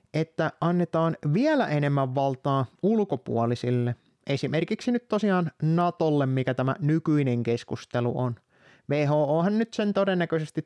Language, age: Finnish, 30-49